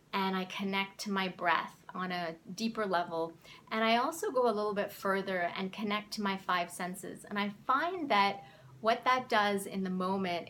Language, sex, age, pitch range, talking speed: English, female, 30-49, 180-205 Hz, 195 wpm